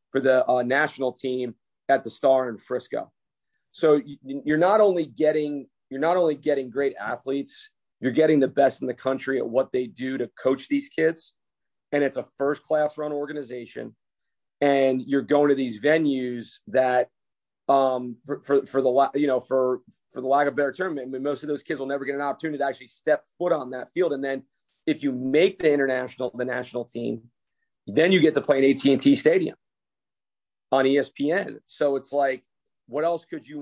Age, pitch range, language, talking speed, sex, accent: 30-49, 130-150 Hz, English, 195 wpm, male, American